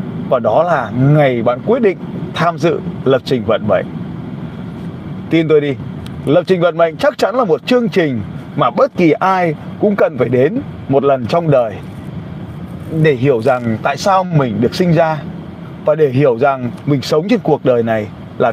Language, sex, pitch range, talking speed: Vietnamese, male, 150-185 Hz, 190 wpm